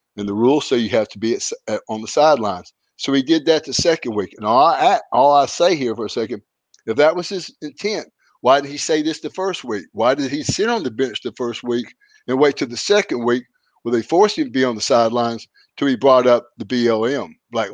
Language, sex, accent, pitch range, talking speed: English, male, American, 120-180 Hz, 245 wpm